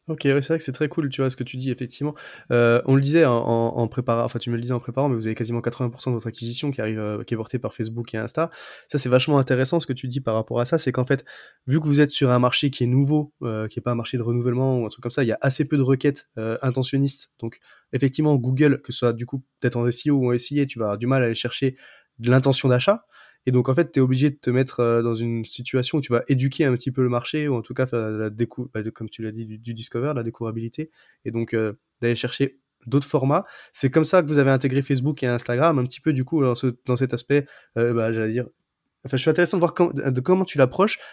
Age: 20-39